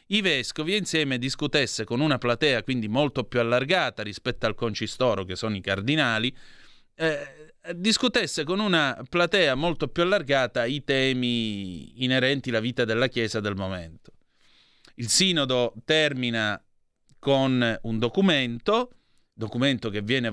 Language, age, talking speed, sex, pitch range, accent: Italian, 30-49, 130 wpm, male, 110-150 Hz, native